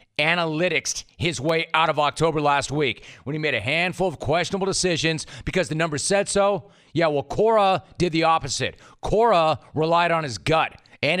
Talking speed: 175 wpm